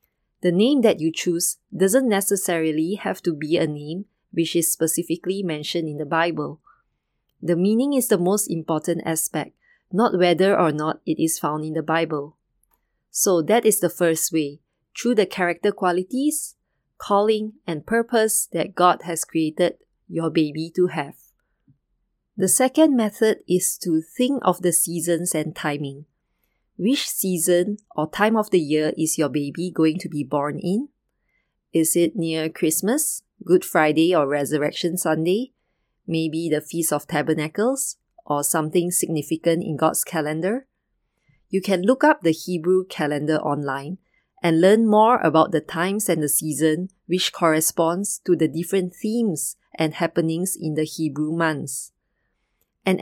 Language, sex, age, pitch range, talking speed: English, female, 20-39, 160-195 Hz, 150 wpm